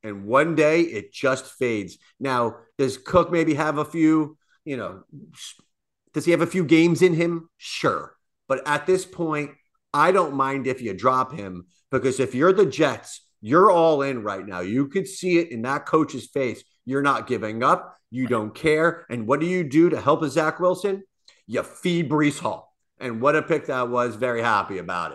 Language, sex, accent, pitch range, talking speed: English, male, American, 125-155 Hz, 195 wpm